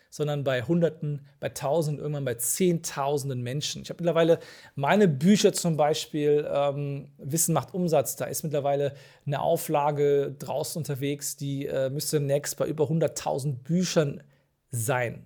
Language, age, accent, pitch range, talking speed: German, 40-59, German, 140-165 Hz, 140 wpm